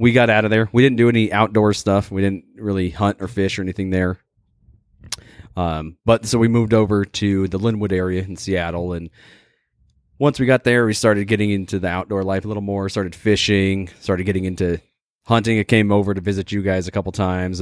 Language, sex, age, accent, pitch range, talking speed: English, male, 30-49, American, 90-105 Hz, 215 wpm